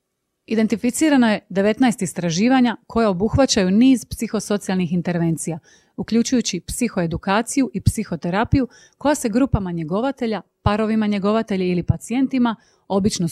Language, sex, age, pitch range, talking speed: Croatian, female, 30-49, 180-230 Hz, 100 wpm